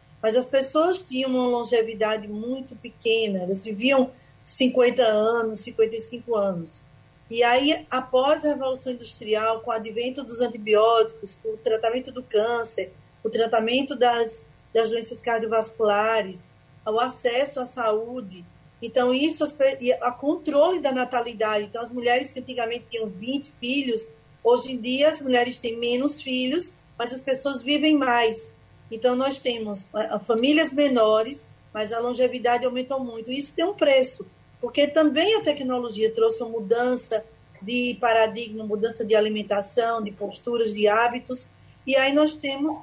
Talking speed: 140 wpm